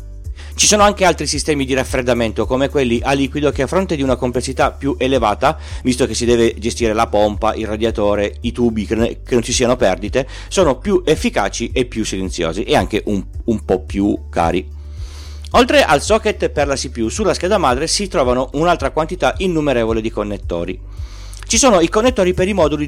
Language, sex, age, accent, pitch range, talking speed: Italian, male, 40-59, native, 100-160 Hz, 185 wpm